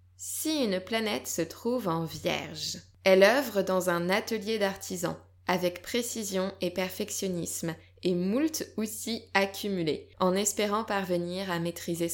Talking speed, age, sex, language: 130 wpm, 20-39, female, French